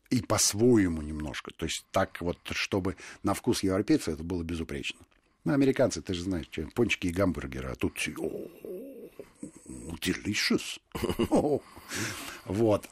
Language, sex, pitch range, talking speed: Russian, male, 90-125 Hz, 120 wpm